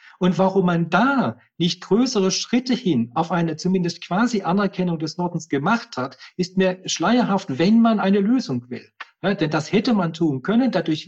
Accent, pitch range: German, 145-190 Hz